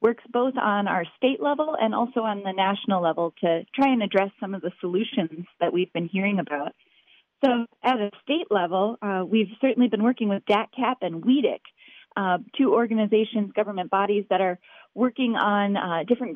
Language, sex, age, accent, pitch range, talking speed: English, female, 30-49, American, 185-240 Hz, 185 wpm